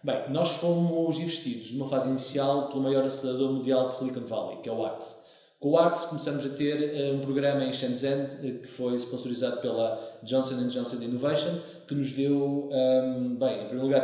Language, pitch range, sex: Portuguese, 125-155 Hz, male